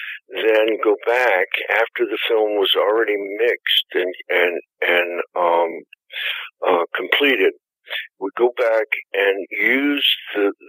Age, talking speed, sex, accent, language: 60-79, 120 wpm, male, American, English